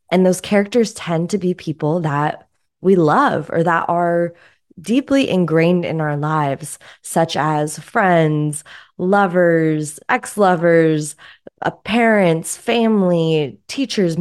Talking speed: 110 wpm